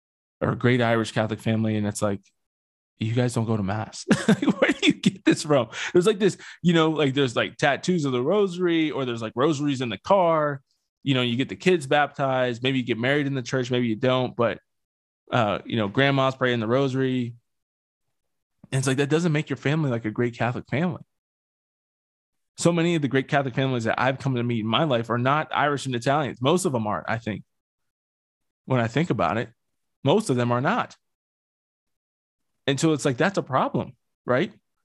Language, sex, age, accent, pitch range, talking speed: English, male, 20-39, American, 110-135 Hz, 210 wpm